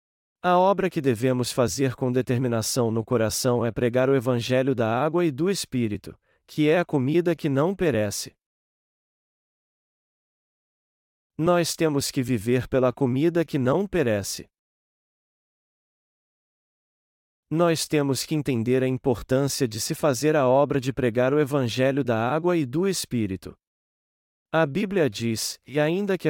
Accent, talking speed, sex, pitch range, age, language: Brazilian, 135 wpm, male, 120-160 Hz, 40-59, Portuguese